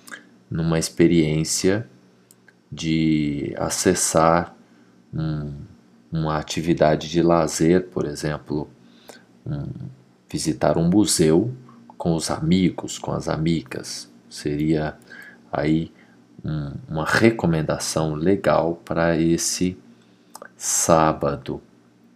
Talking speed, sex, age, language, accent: 75 wpm, male, 40-59, Portuguese, Brazilian